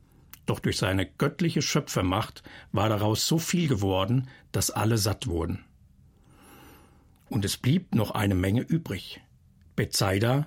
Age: 60-79